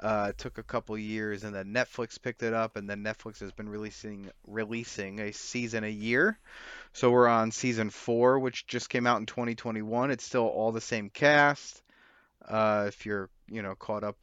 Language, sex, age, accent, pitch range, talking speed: English, male, 20-39, American, 105-125 Hz, 200 wpm